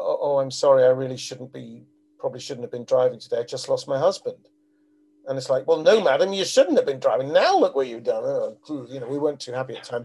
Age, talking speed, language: 40-59, 265 wpm, English